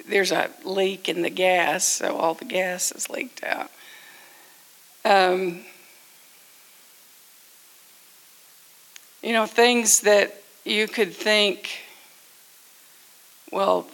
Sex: female